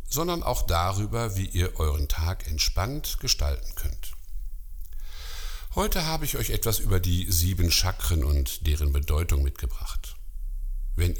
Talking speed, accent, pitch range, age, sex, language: 130 wpm, German, 75-95 Hz, 50-69, male, German